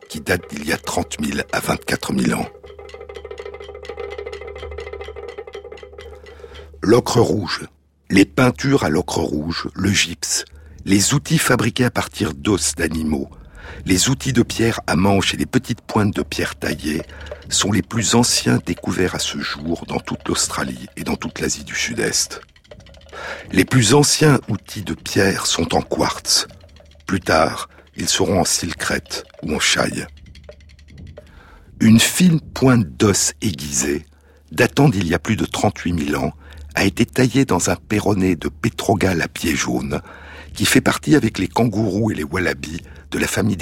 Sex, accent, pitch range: male, French, 75-125 Hz